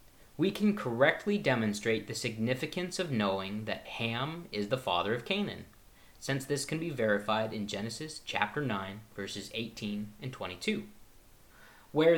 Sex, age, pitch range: male, 30-49, 110-160 Hz